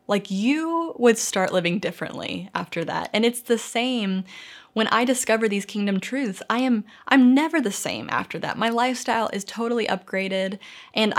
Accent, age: American, 20-39